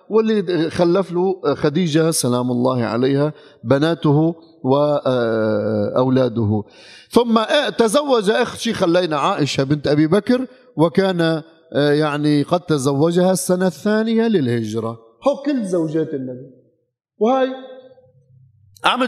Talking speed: 100 wpm